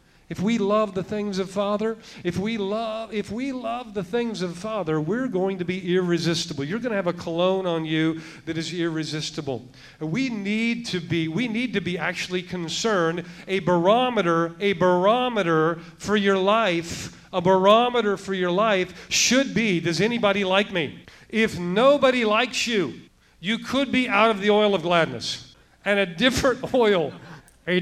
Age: 50-69